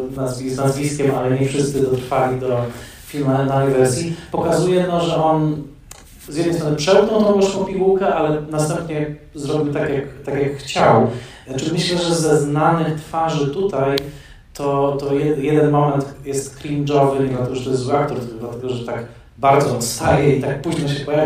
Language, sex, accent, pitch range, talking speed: Polish, male, native, 125-145 Hz, 180 wpm